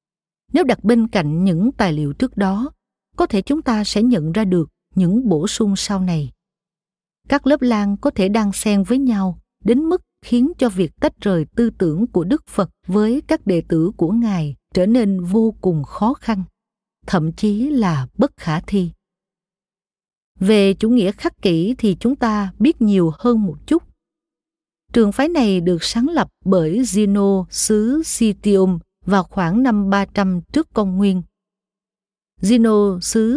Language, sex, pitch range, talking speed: Vietnamese, female, 185-230 Hz, 165 wpm